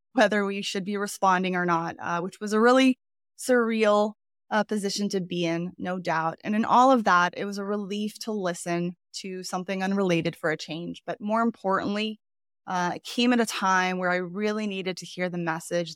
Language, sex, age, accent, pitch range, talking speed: English, female, 20-39, American, 175-205 Hz, 205 wpm